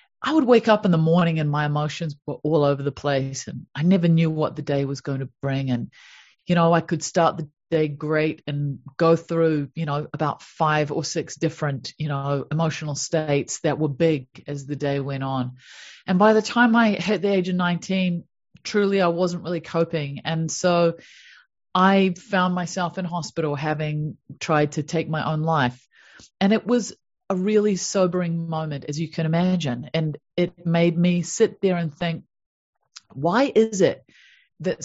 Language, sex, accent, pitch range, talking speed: English, female, Australian, 150-185 Hz, 190 wpm